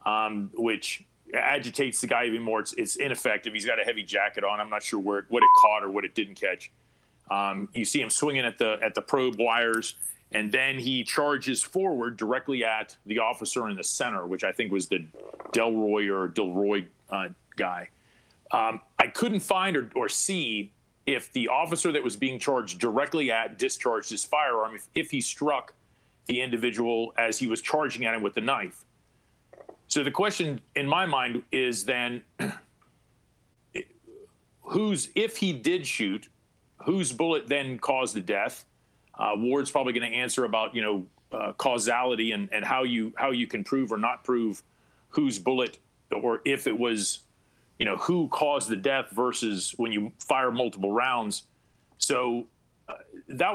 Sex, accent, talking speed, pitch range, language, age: male, American, 175 wpm, 110-150 Hz, English, 40-59